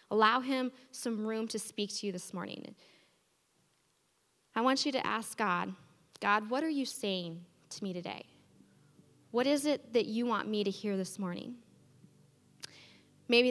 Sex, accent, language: female, American, English